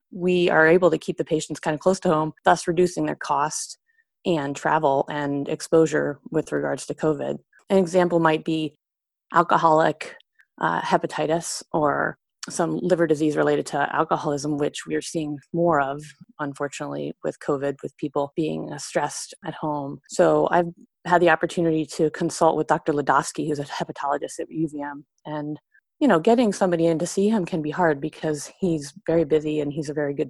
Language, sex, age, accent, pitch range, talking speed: English, female, 30-49, American, 150-175 Hz, 180 wpm